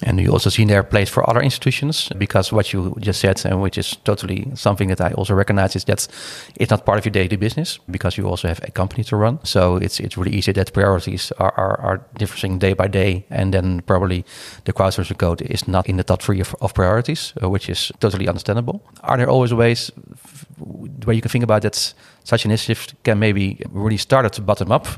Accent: Dutch